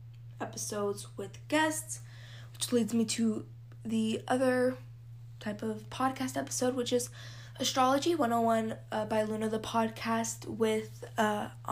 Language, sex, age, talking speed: English, female, 10-29, 125 wpm